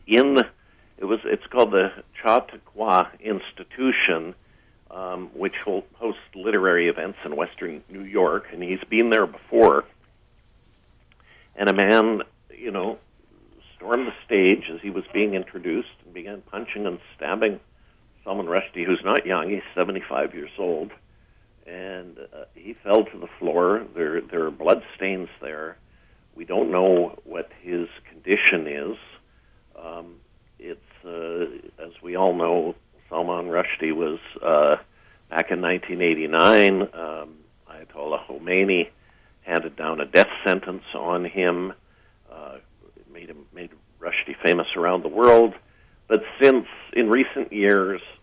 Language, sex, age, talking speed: English, male, 60-79, 135 wpm